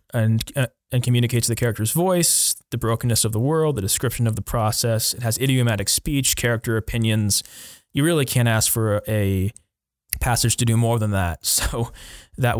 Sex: male